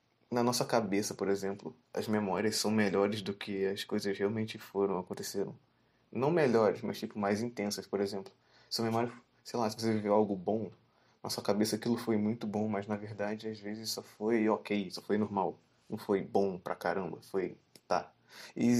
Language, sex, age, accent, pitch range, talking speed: Portuguese, male, 20-39, Brazilian, 105-115 Hz, 190 wpm